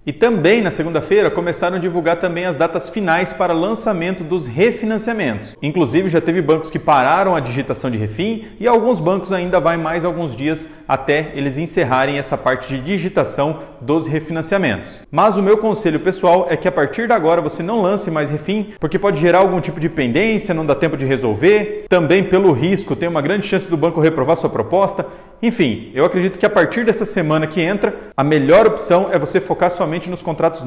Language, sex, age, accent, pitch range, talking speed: Portuguese, male, 40-59, Brazilian, 165-200 Hz, 200 wpm